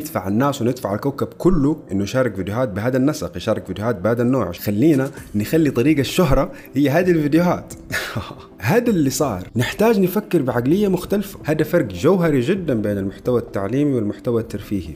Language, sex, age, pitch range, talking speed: Arabic, male, 30-49, 100-150 Hz, 150 wpm